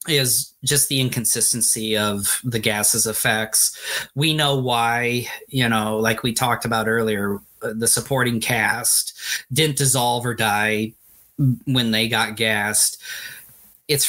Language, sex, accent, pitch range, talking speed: English, male, American, 110-135 Hz, 130 wpm